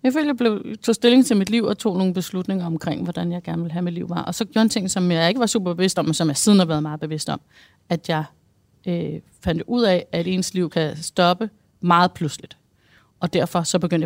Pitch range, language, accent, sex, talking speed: 165-185 Hz, Danish, native, female, 255 wpm